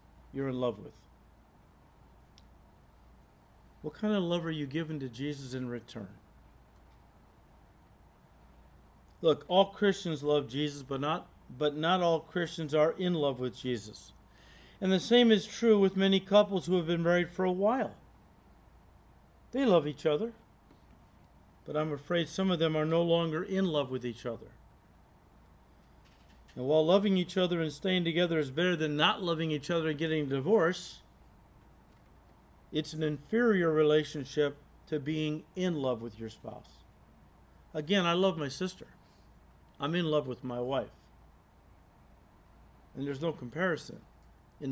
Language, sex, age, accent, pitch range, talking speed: English, male, 50-69, American, 125-170 Hz, 150 wpm